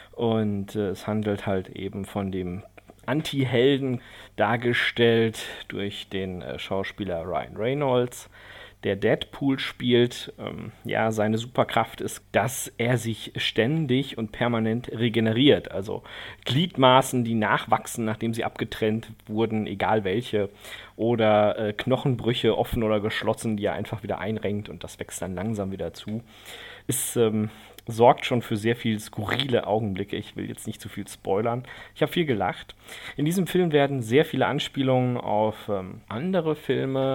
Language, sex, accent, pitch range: German, male, German, 105-125 Hz